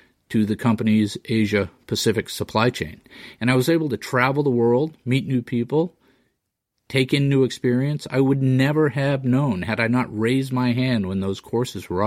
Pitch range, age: 110-145 Hz, 40-59